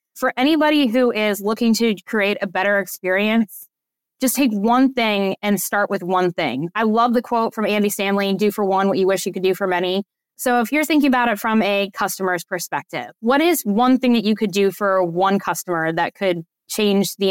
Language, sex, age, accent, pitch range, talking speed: English, female, 20-39, American, 195-240 Hz, 215 wpm